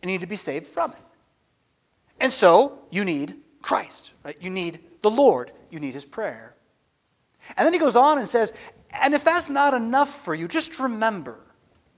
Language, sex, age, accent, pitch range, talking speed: English, male, 30-49, American, 200-290 Hz, 190 wpm